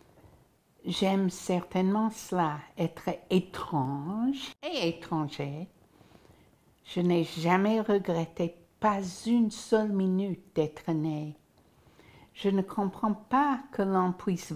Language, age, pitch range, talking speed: French, 60-79, 175-225 Hz, 100 wpm